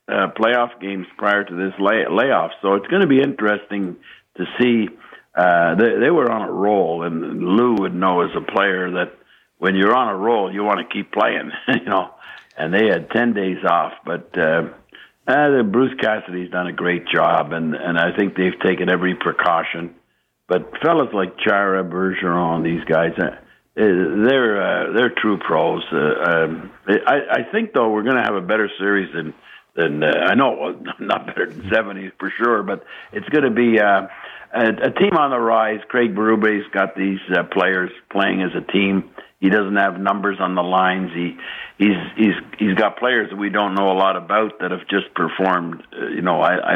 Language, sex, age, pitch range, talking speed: English, male, 60-79, 90-105 Hz, 200 wpm